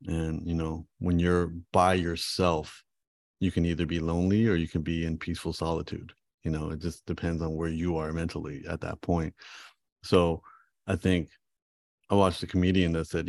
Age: 30-49